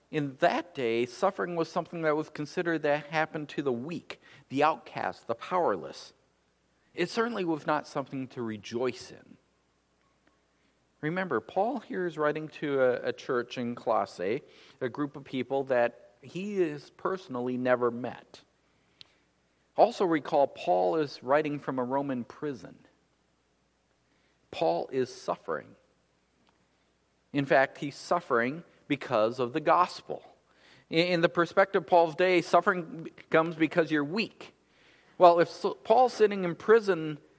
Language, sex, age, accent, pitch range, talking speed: English, male, 50-69, American, 125-175 Hz, 135 wpm